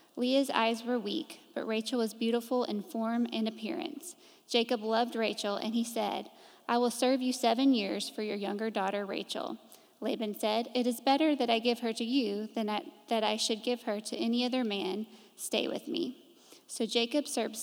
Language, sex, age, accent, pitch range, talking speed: English, female, 20-39, American, 225-270 Hz, 195 wpm